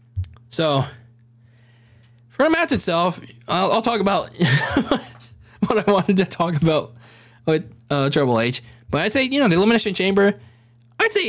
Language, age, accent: English, 20-39, American